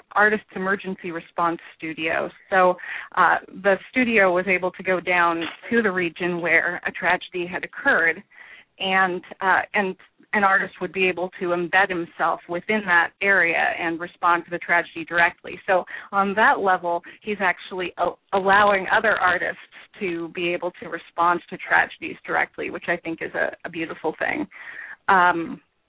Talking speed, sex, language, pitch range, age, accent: 155 wpm, female, English, 170-195 Hz, 30-49, American